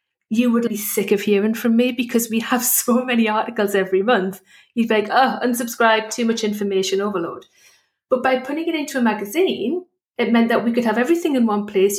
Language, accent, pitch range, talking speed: English, British, 200-250 Hz, 210 wpm